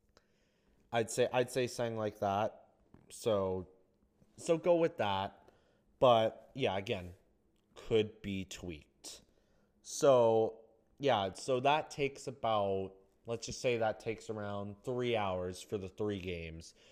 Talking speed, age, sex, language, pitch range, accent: 130 wpm, 20-39, male, English, 105-140 Hz, American